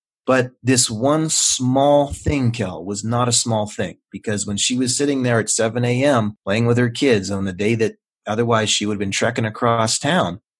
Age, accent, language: 30-49, American, English